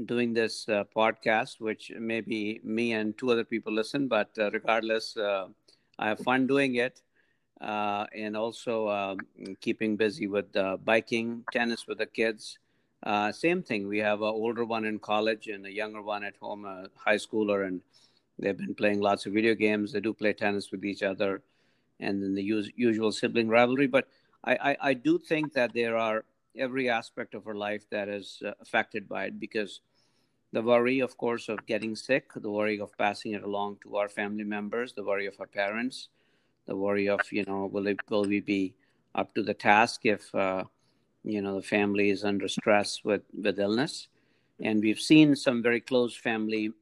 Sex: male